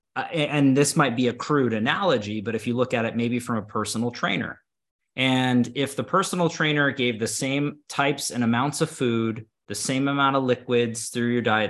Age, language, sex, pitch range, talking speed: 20-39, English, male, 110-140 Hz, 205 wpm